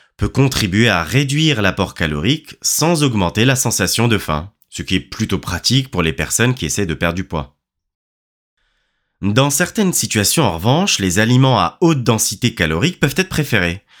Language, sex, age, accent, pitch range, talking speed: French, male, 20-39, French, 95-140 Hz, 170 wpm